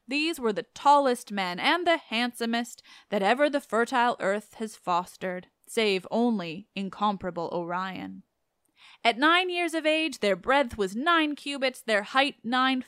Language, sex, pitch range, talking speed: English, female, 195-255 Hz, 150 wpm